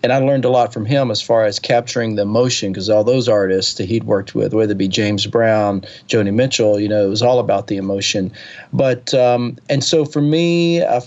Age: 40-59